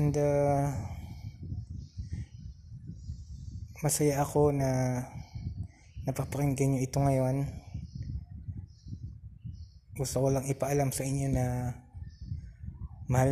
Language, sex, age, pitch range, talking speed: Filipino, male, 20-39, 95-140 Hz, 75 wpm